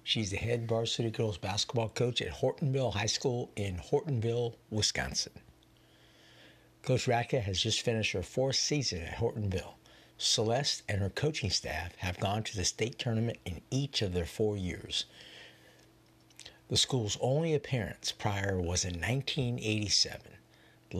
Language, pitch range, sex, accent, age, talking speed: English, 95-120 Hz, male, American, 60-79, 140 wpm